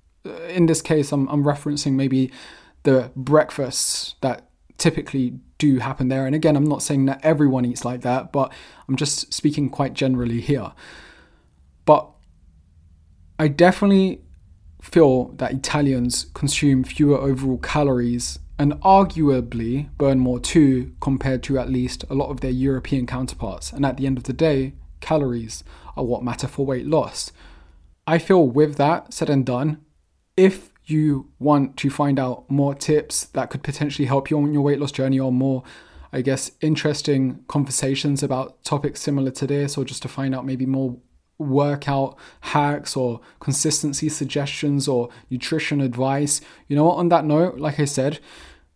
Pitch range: 125-150 Hz